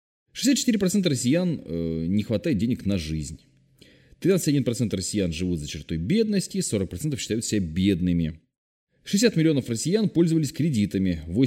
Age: 30-49